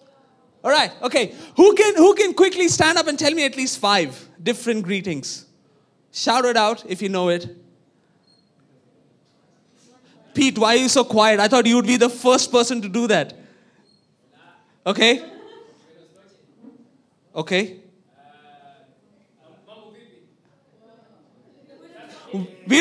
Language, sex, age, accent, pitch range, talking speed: English, male, 20-39, Indian, 200-295 Hz, 115 wpm